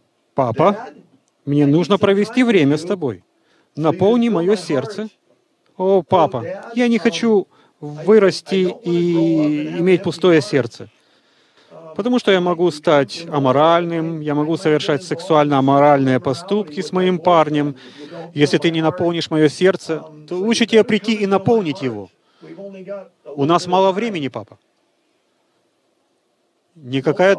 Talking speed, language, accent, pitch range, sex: 115 wpm, Russian, native, 135-195 Hz, male